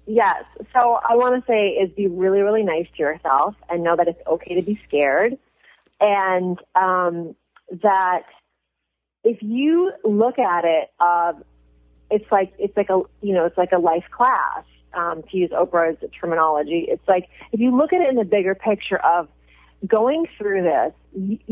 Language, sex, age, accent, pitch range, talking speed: English, female, 30-49, American, 165-205 Hz, 175 wpm